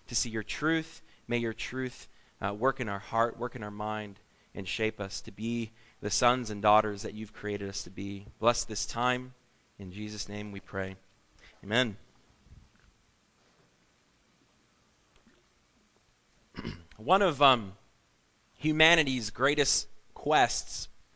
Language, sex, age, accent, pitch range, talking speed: English, male, 30-49, American, 105-140 Hz, 130 wpm